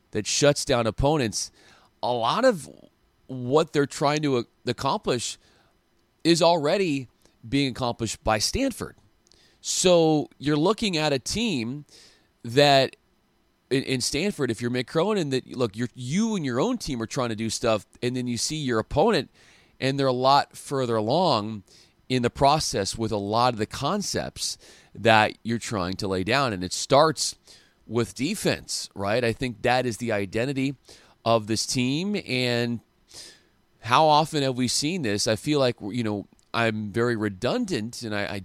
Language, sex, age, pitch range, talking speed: English, male, 30-49, 110-145 Hz, 160 wpm